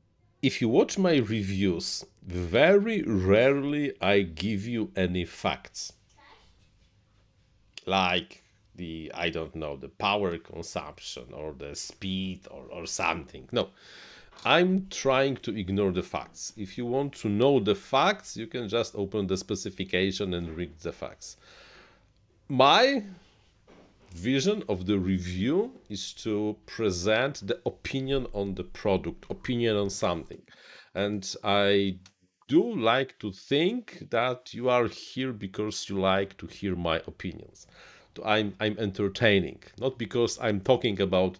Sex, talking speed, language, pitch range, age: male, 130 wpm, English, 95-115 Hz, 40-59